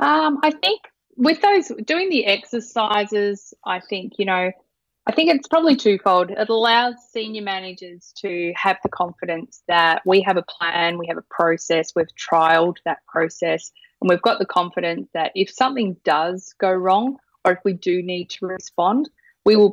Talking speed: 175 wpm